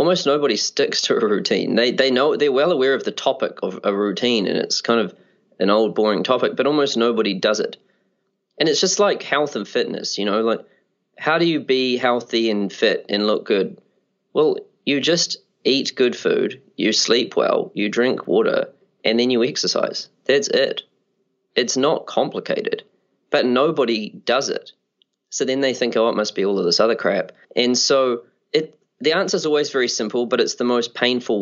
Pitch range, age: 115-180 Hz, 20-39